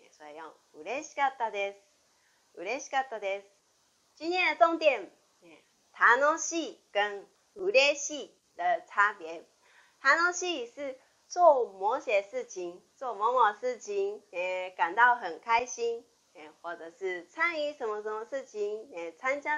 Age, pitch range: 30-49, 205-330 Hz